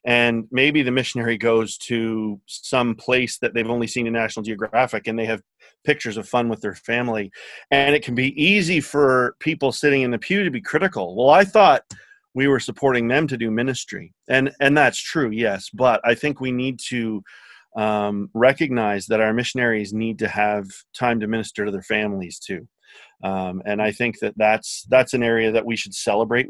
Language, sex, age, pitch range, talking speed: English, male, 30-49, 110-130 Hz, 195 wpm